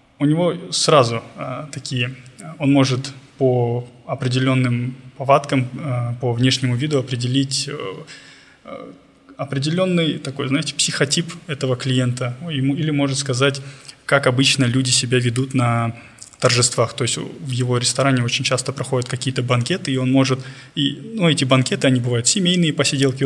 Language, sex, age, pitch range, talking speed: Russian, male, 20-39, 125-140 Hz, 135 wpm